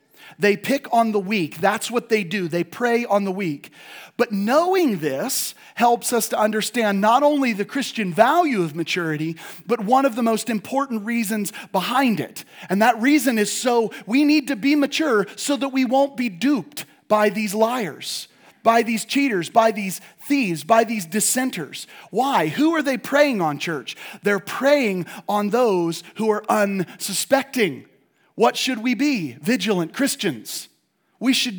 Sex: male